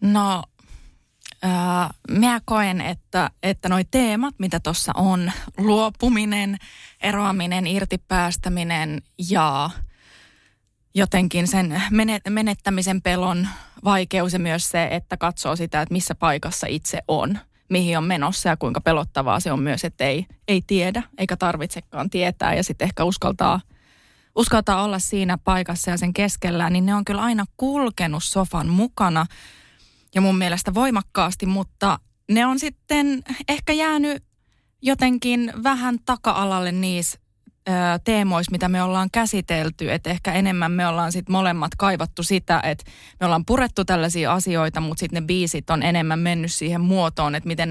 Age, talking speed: 20-39, 140 wpm